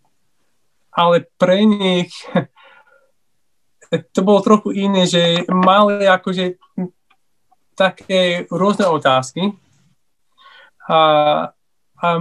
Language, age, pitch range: Slovak, 20-39, 150-180 Hz